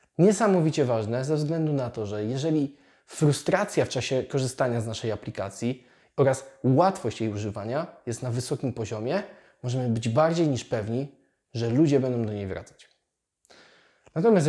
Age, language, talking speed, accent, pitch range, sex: 20-39, Polish, 145 wpm, native, 115-150 Hz, male